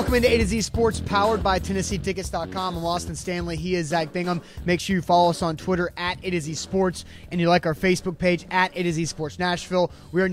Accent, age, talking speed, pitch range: American, 30-49, 230 wpm, 170-195 Hz